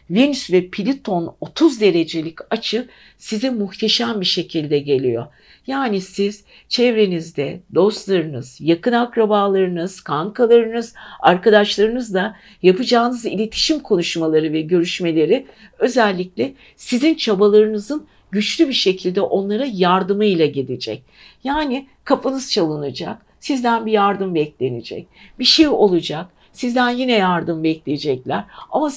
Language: Turkish